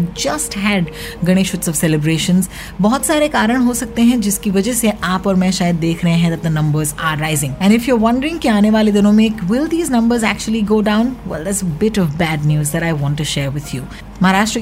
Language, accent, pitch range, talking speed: English, Indian, 175-225 Hz, 230 wpm